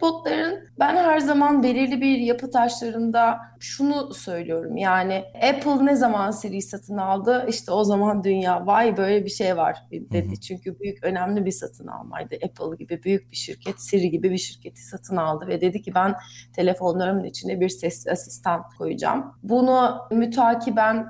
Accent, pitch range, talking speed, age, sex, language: native, 175-230 Hz, 155 wpm, 30-49, female, Turkish